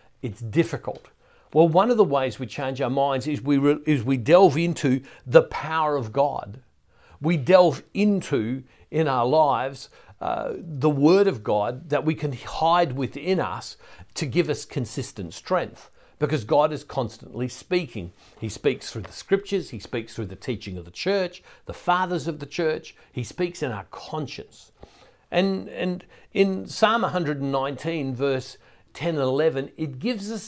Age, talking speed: 50-69, 170 wpm